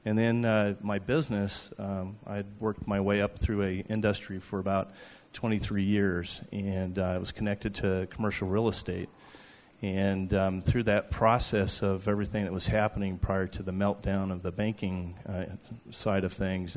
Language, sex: English, male